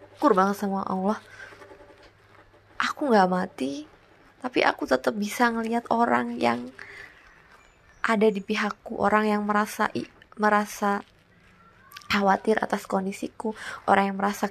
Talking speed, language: 110 wpm, Indonesian